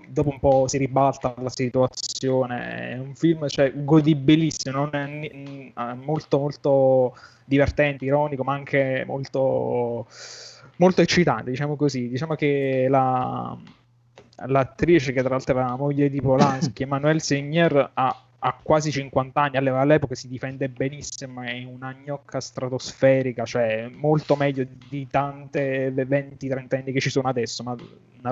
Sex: male